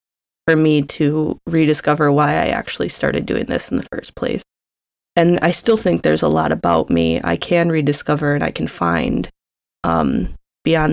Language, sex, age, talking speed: English, female, 20-39, 175 wpm